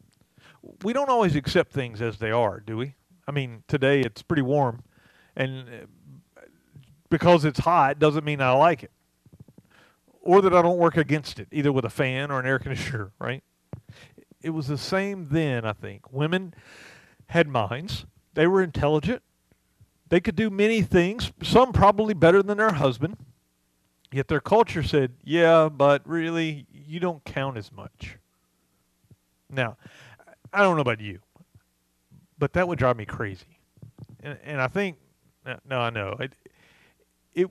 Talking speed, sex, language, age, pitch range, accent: 160 wpm, male, English, 40-59, 115-165 Hz, American